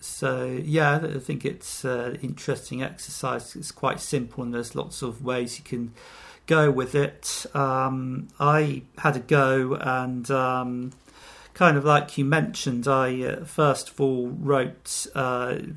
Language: English